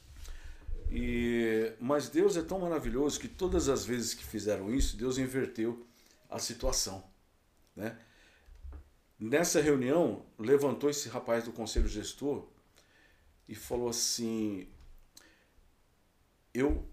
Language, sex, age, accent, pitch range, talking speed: Portuguese, male, 50-69, Brazilian, 75-120 Hz, 105 wpm